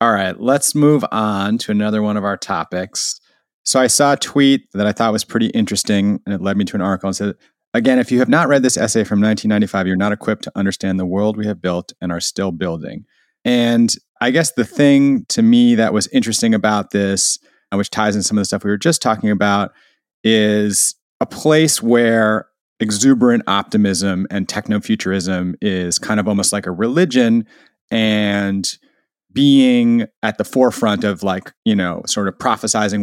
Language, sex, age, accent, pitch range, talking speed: English, male, 30-49, American, 100-120 Hz, 195 wpm